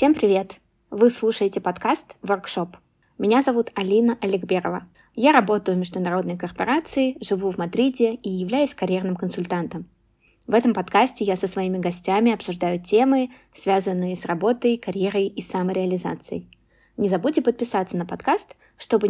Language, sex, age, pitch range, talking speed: Russian, female, 20-39, 185-225 Hz, 135 wpm